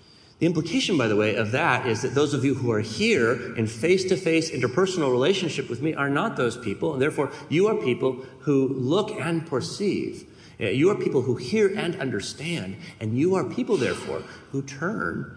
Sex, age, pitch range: male, 40-59, 110-160 Hz